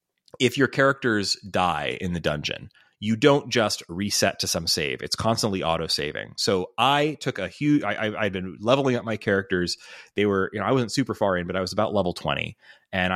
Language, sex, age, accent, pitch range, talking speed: English, male, 30-49, American, 95-125 Hz, 205 wpm